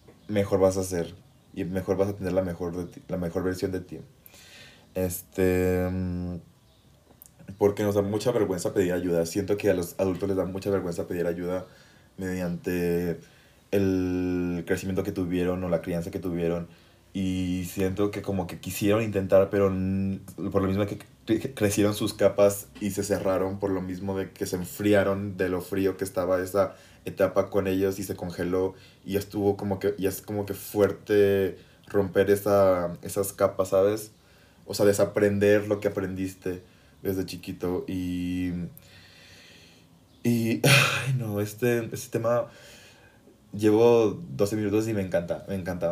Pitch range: 90-105 Hz